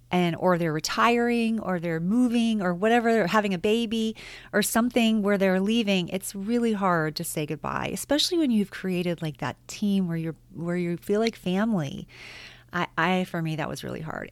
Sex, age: female, 30-49